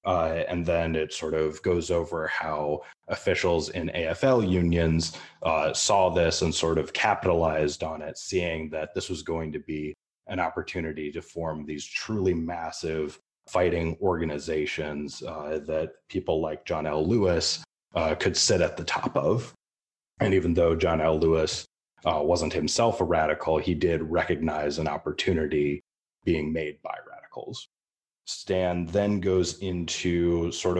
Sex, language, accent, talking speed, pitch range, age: male, English, American, 150 wpm, 80-90 Hz, 30-49